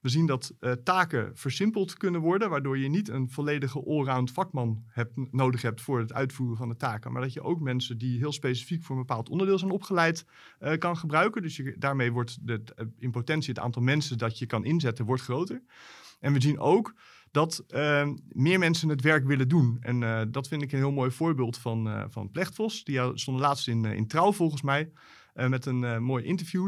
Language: Dutch